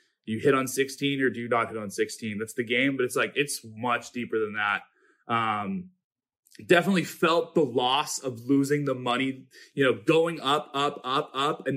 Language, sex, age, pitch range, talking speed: English, male, 20-39, 125-175 Hz, 200 wpm